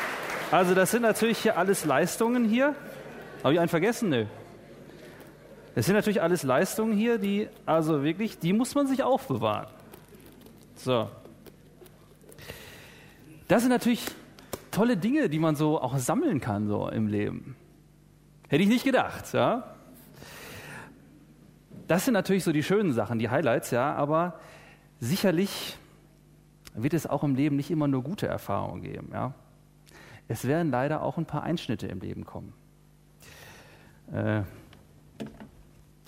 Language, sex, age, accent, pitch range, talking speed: English, male, 30-49, German, 135-190 Hz, 135 wpm